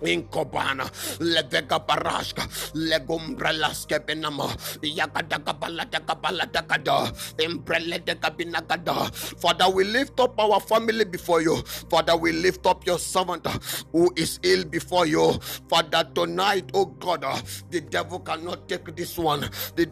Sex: male